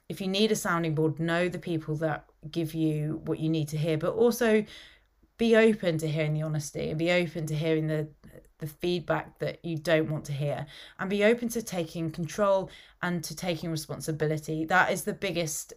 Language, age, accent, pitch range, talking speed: English, 30-49, British, 155-190 Hz, 200 wpm